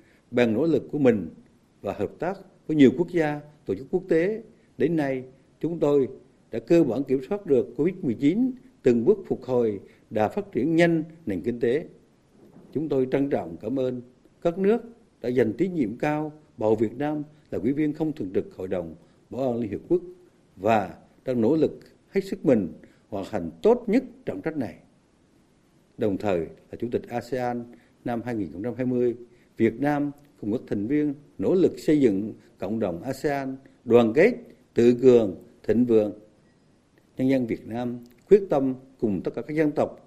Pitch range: 120-155 Hz